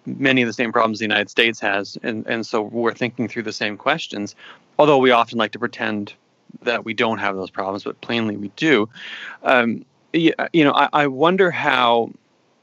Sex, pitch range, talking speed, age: male, 110-135 Hz, 200 wpm, 30-49